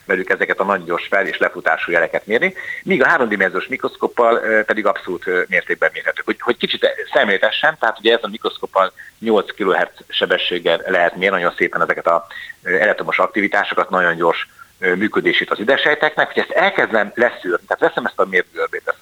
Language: Hungarian